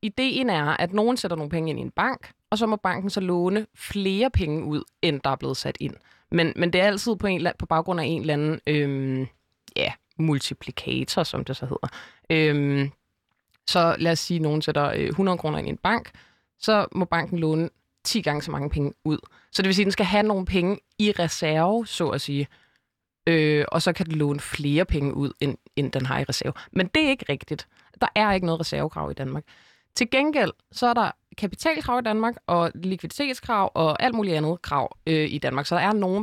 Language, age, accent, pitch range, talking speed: Danish, 20-39, native, 155-205 Hz, 225 wpm